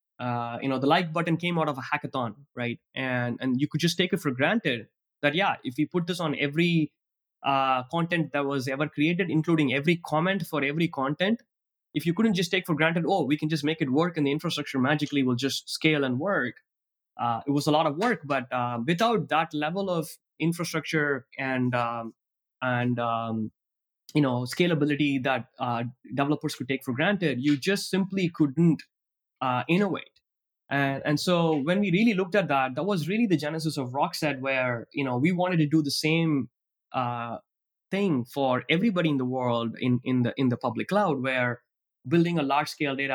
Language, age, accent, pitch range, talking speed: English, 20-39, Indian, 125-165 Hz, 200 wpm